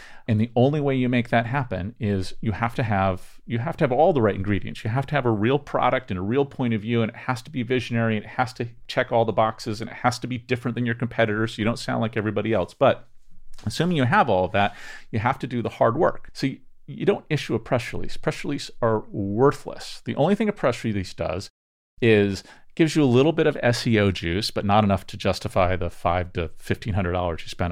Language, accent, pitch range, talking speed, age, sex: English, American, 100-125 Hz, 255 wpm, 40-59, male